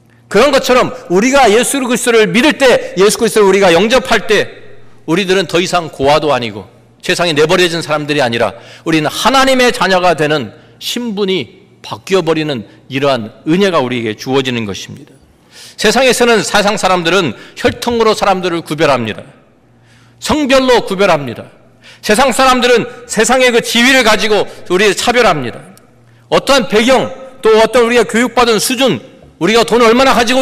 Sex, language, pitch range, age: male, Korean, 165-250 Hz, 40-59